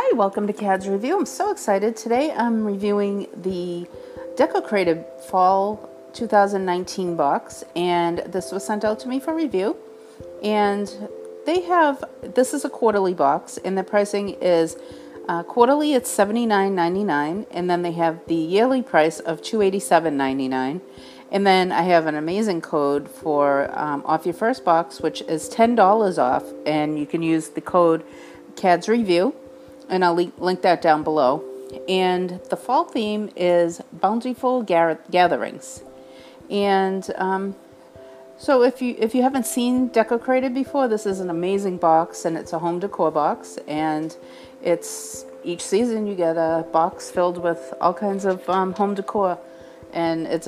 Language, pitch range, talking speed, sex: English, 165-220 Hz, 150 wpm, female